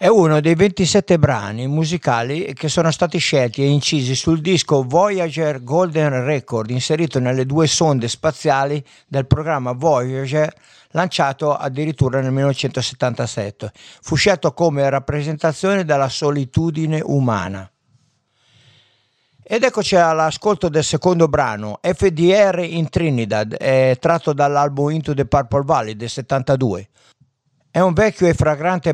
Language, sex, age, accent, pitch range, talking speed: Italian, male, 50-69, native, 130-165 Hz, 120 wpm